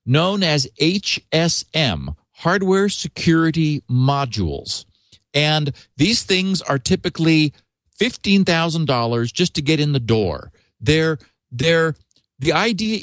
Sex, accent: male, American